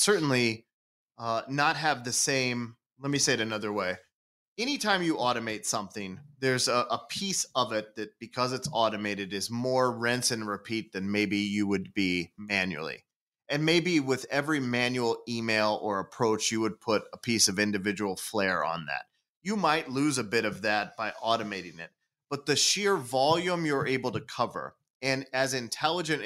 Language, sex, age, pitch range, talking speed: English, male, 30-49, 105-135 Hz, 175 wpm